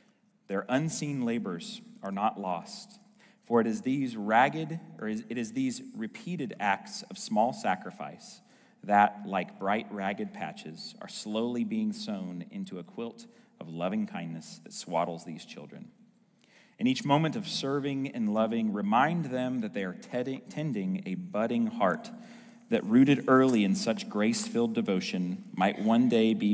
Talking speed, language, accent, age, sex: 150 wpm, English, American, 30-49, male